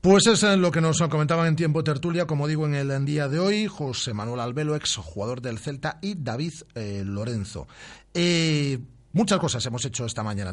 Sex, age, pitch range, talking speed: male, 40-59, 105-155 Hz, 180 wpm